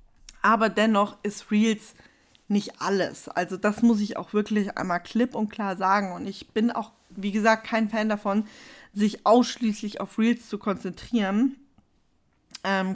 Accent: German